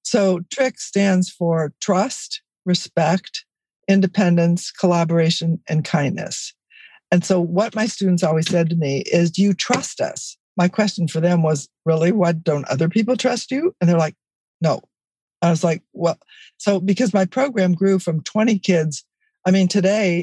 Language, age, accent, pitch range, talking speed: English, 60-79, American, 160-195 Hz, 165 wpm